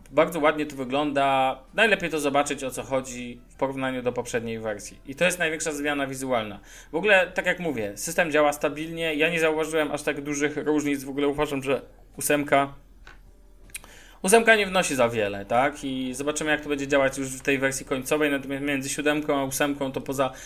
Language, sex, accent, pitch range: Polish, male, native, 130-155 Hz